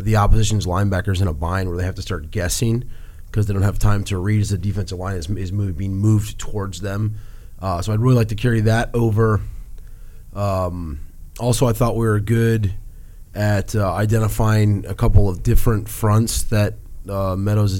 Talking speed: 190 wpm